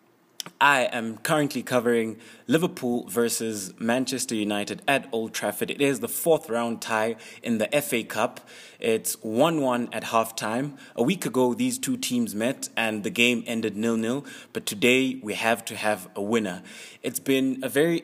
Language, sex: English, male